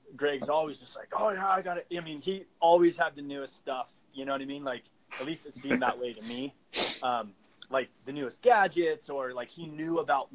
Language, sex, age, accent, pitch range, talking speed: English, male, 30-49, American, 125-175 Hz, 240 wpm